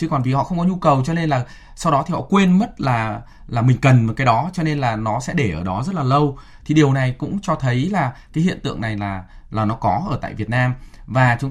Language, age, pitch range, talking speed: Vietnamese, 20-39, 105-145 Hz, 290 wpm